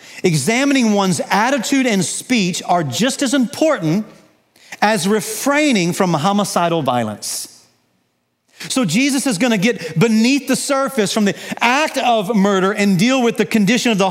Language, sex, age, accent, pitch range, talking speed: English, male, 40-59, American, 175-245 Hz, 150 wpm